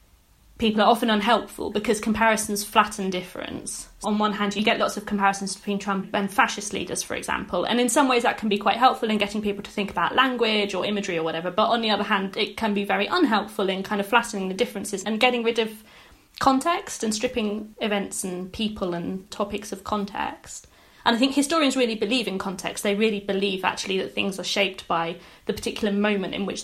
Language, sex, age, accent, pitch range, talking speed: English, female, 20-39, British, 195-240 Hz, 215 wpm